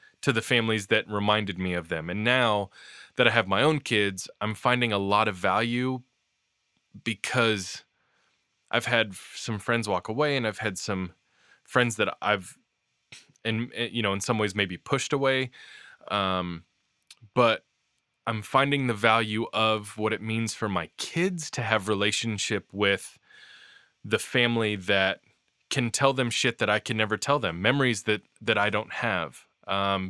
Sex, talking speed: male, 165 wpm